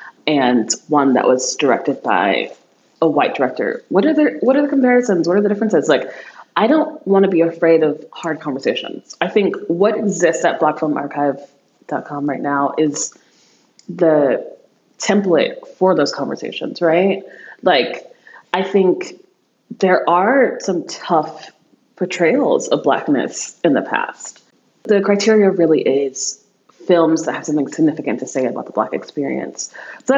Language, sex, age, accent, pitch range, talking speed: English, female, 20-39, American, 140-225 Hz, 145 wpm